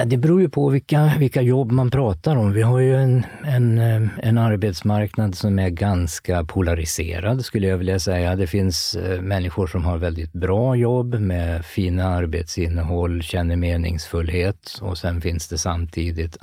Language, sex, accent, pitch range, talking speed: Swedish, male, native, 85-100 Hz, 155 wpm